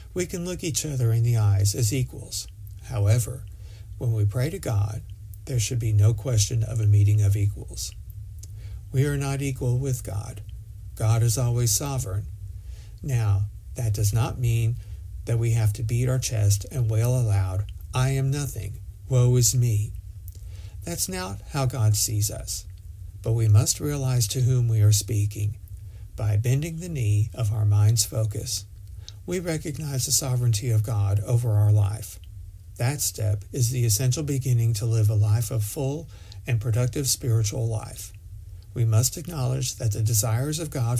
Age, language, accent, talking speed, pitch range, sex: 60-79, English, American, 165 wpm, 100-120 Hz, male